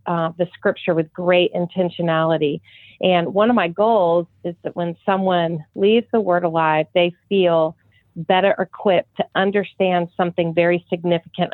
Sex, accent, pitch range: female, American, 165-185 Hz